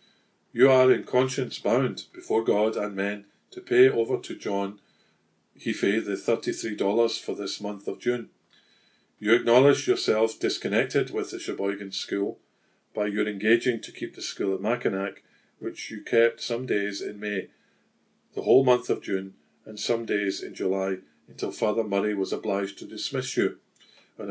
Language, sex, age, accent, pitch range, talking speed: English, male, 50-69, British, 100-120 Hz, 160 wpm